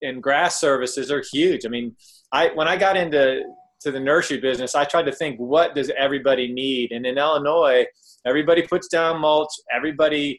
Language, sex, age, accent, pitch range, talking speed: English, male, 20-39, American, 120-145 Hz, 185 wpm